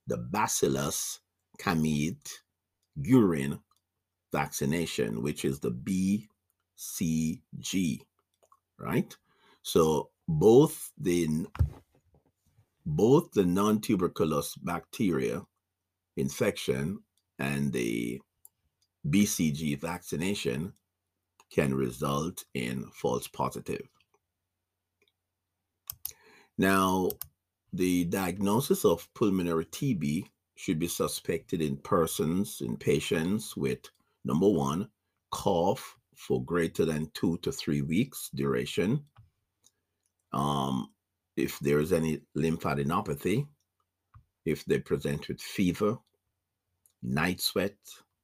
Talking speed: 80 wpm